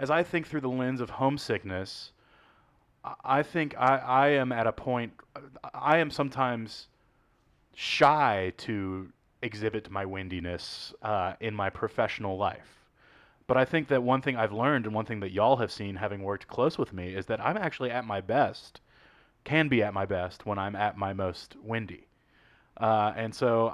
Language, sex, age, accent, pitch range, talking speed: English, male, 30-49, American, 105-130 Hz, 175 wpm